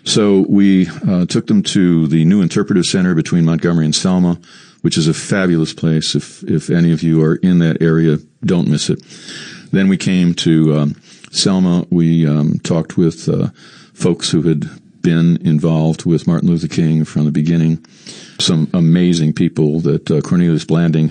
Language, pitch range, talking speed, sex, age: English, 80-90 Hz, 175 wpm, male, 50-69